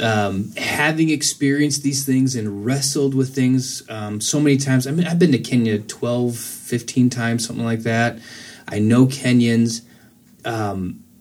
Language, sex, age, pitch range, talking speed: English, male, 20-39, 115-135 Hz, 155 wpm